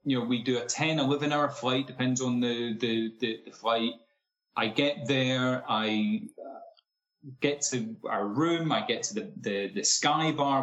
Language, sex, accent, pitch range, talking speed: English, male, British, 120-160 Hz, 175 wpm